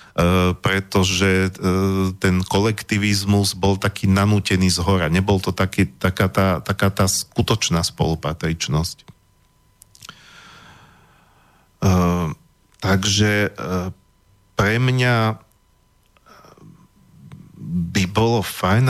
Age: 40-59